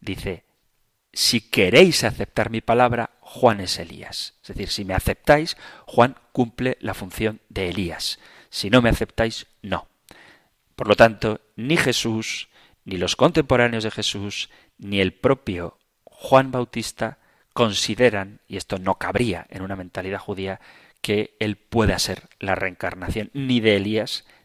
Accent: Spanish